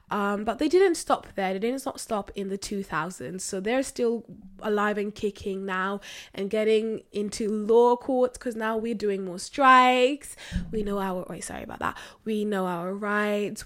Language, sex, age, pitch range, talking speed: English, female, 10-29, 190-225 Hz, 185 wpm